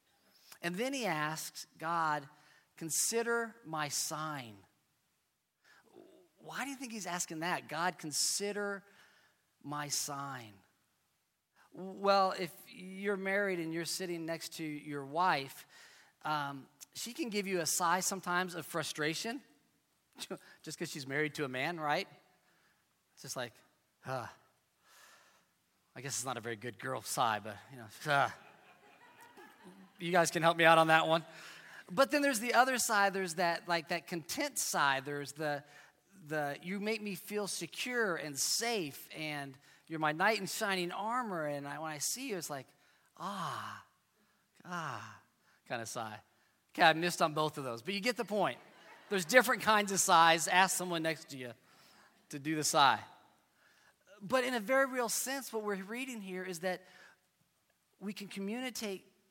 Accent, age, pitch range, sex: American, 40-59, 155-205 Hz, male